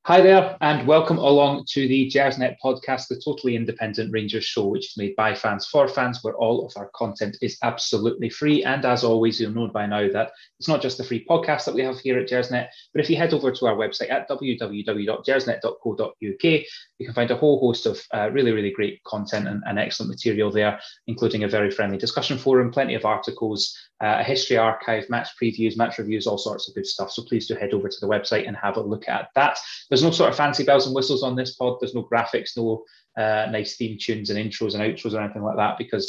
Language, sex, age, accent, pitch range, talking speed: English, male, 20-39, British, 110-135 Hz, 235 wpm